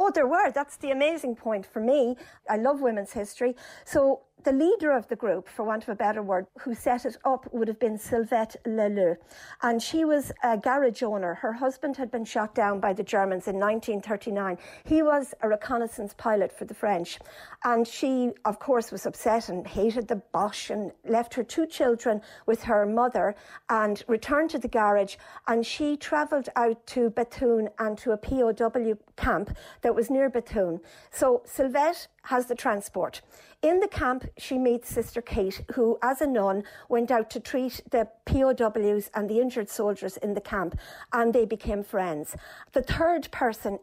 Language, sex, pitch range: English, female, 215-260 Hz